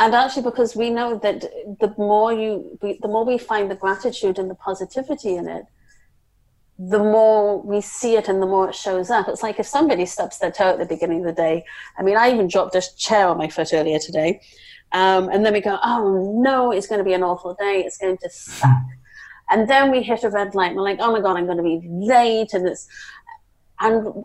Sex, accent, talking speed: female, British, 235 wpm